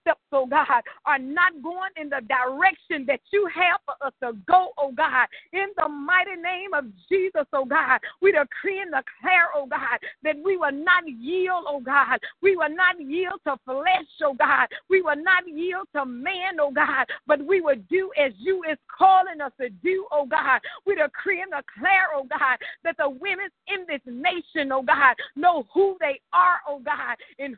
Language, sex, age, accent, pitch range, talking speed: English, female, 40-59, American, 280-370 Hz, 190 wpm